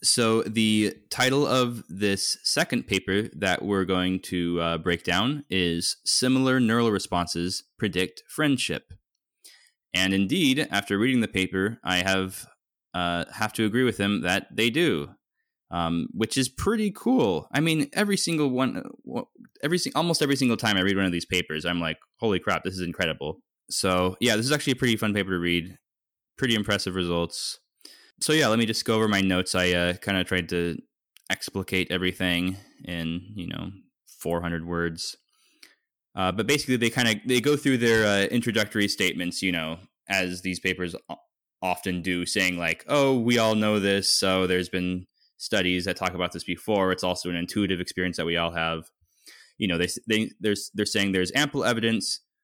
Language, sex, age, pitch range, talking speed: English, male, 20-39, 90-115 Hz, 175 wpm